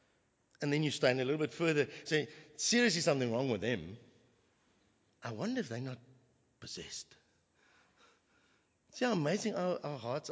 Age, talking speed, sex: 50-69, 150 wpm, male